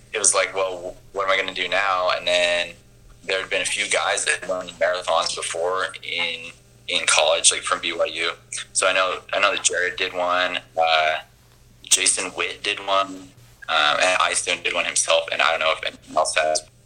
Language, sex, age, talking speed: English, male, 20-39, 210 wpm